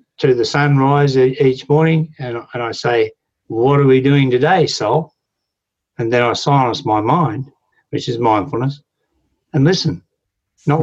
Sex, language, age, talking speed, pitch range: male, English, 60-79, 145 wpm, 110-145 Hz